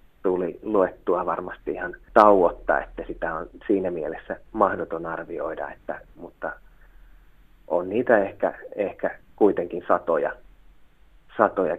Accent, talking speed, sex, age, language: native, 100 wpm, male, 30-49, Finnish